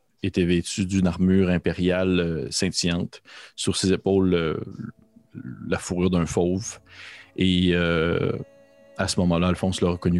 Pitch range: 85-100 Hz